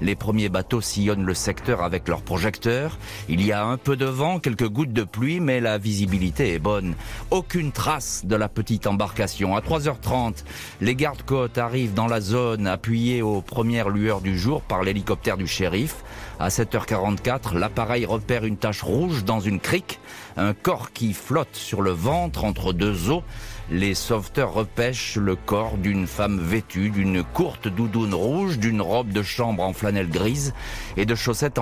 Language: French